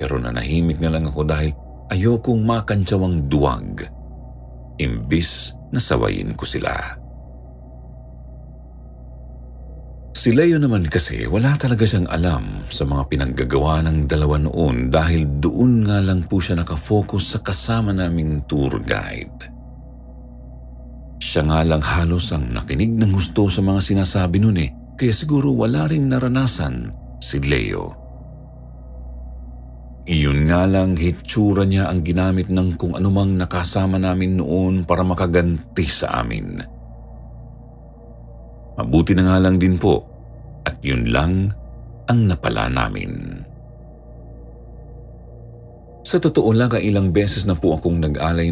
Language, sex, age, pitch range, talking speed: Filipino, male, 50-69, 65-95 Hz, 115 wpm